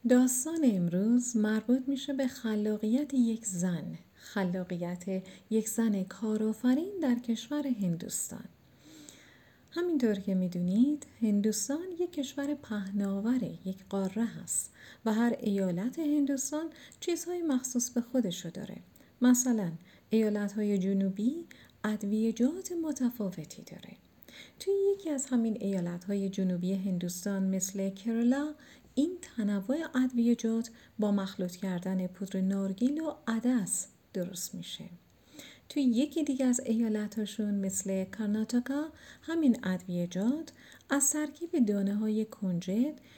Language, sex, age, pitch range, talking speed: Persian, female, 40-59, 195-260 Hz, 105 wpm